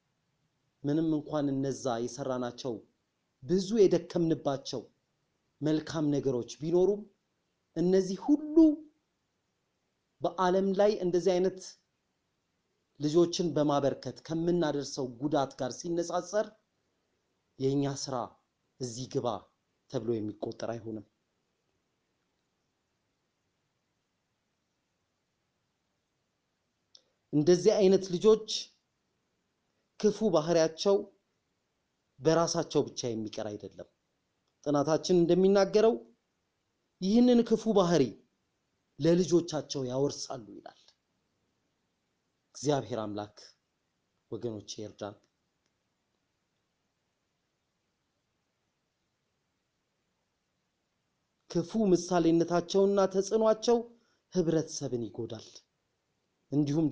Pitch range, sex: 130-185 Hz, male